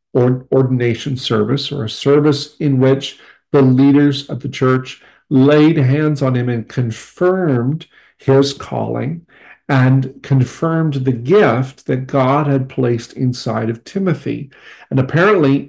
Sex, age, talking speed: male, 50-69, 130 wpm